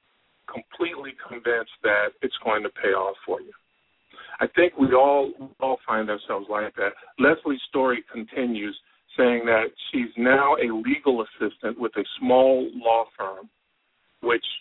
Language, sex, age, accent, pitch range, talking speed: English, male, 50-69, American, 115-160 Hz, 150 wpm